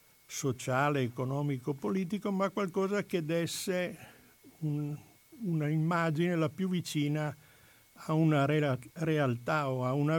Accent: native